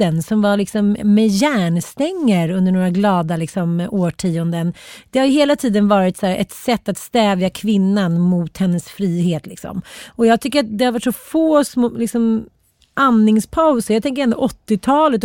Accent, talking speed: Swedish, 170 wpm